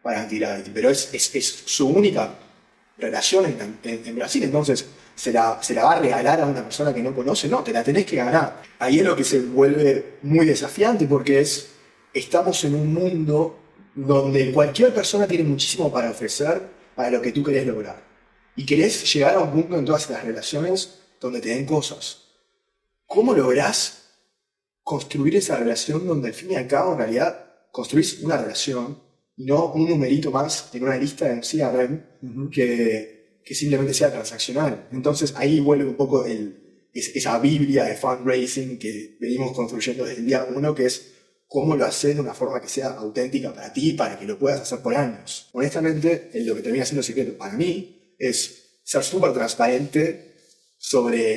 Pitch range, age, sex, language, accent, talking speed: 125-160 Hz, 30-49, male, Spanish, Argentinian, 180 wpm